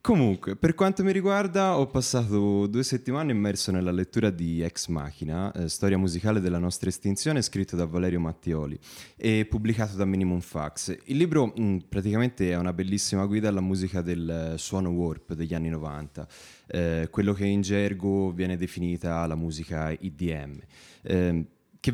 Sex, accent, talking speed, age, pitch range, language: male, native, 160 wpm, 20-39, 85-110 Hz, Italian